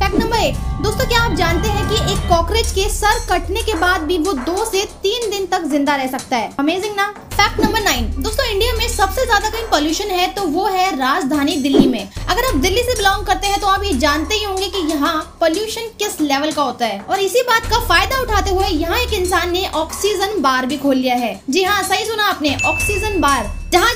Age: 20-39